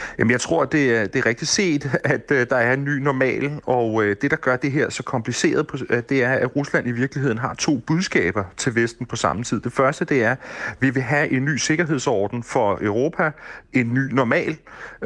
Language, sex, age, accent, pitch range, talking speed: Danish, male, 30-49, native, 115-145 Hz, 210 wpm